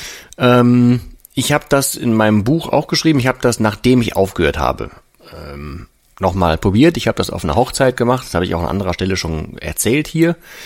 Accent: German